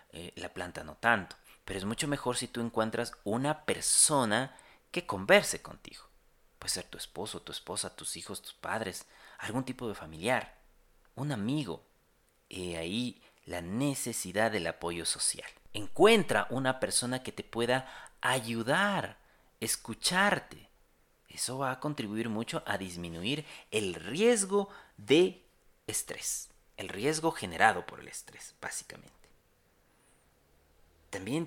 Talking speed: 125 wpm